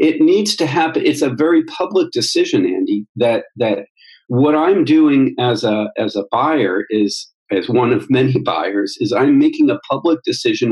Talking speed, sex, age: 180 wpm, male, 50-69